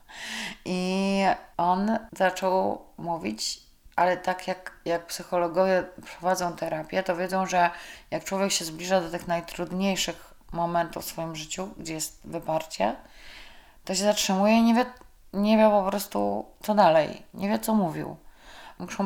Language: Polish